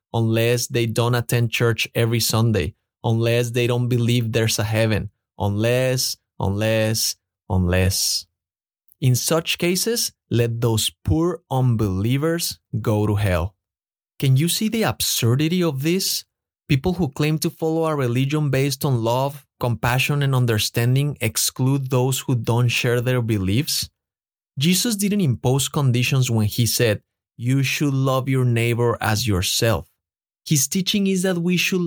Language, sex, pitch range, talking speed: English, male, 110-145 Hz, 140 wpm